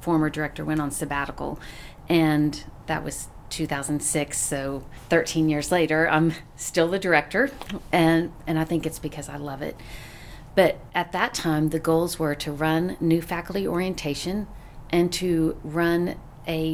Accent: American